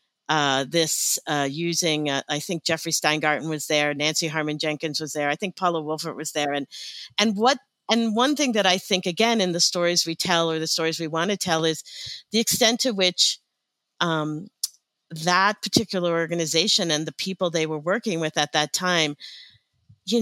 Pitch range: 155-190 Hz